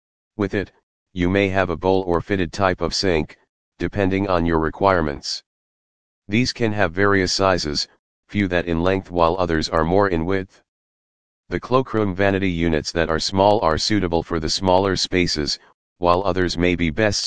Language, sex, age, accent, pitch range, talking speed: English, male, 40-59, American, 85-100 Hz, 170 wpm